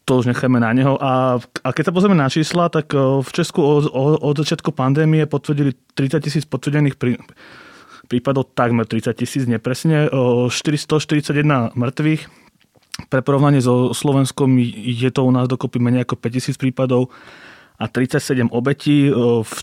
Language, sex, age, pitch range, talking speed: Slovak, male, 30-49, 125-140 Hz, 135 wpm